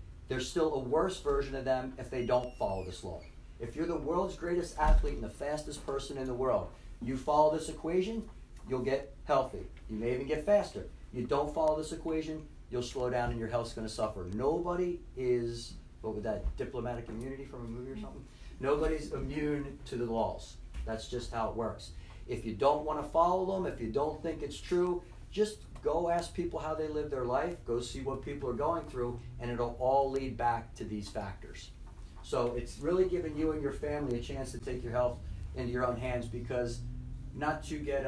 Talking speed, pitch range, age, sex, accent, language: 210 wpm, 120-155 Hz, 40-59, male, American, English